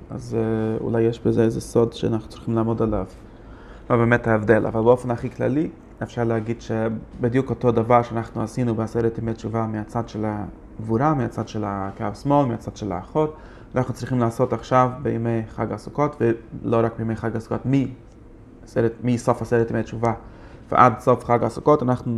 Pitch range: 110-125 Hz